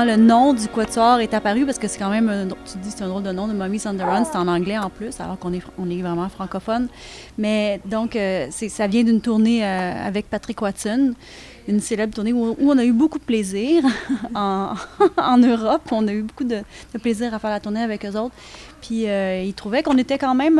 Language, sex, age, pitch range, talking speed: French, female, 30-49, 210-275 Hz, 240 wpm